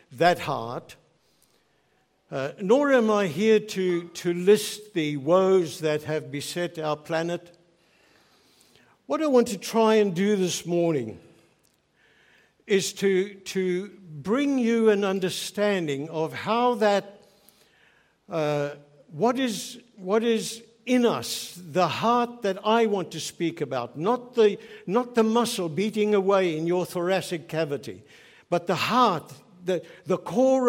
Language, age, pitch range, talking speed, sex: English, 60-79, 160-215 Hz, 135 wpm, male